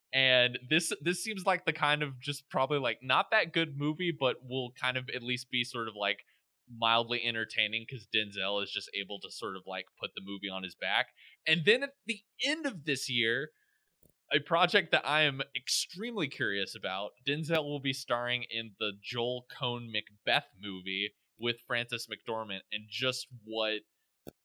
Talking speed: 180 wpm